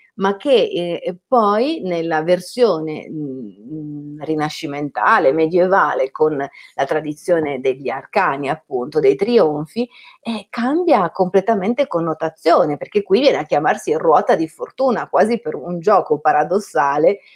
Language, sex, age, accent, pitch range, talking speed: Italian, female, 40-59, native, 160-230 Hz, 115 wpm